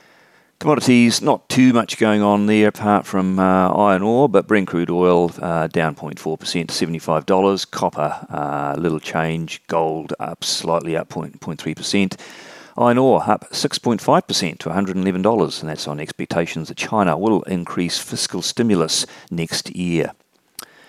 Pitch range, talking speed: 80-105 Hz, 140 wpm